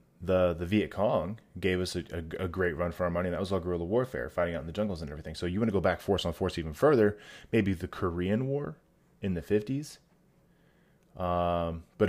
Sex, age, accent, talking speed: male, 20-39, American, 235 wpm